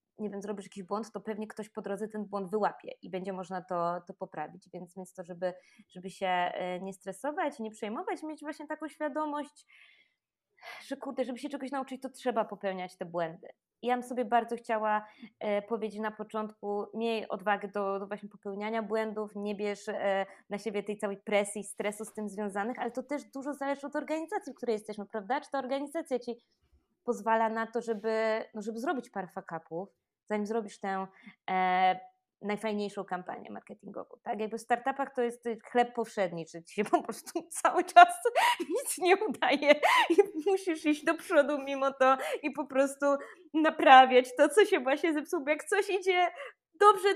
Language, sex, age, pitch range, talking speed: Polish, female, 20-39, 210-300 Hz, 180 wpm